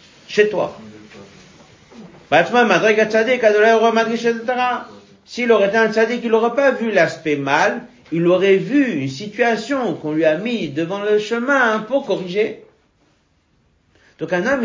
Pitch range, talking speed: 155-230 Hz, 125 wpm